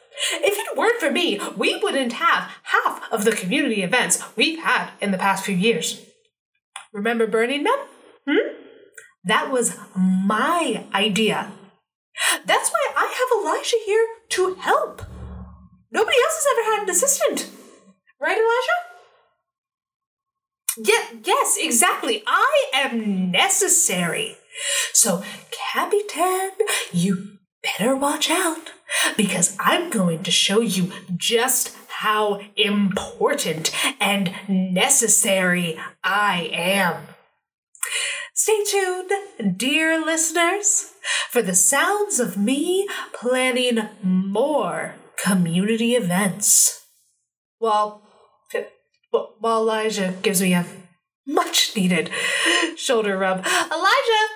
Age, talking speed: 30-49, 100 wpm